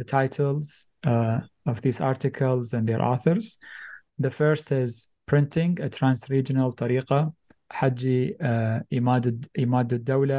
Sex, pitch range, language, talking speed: male, 120-140 Hz, English, 140 wpm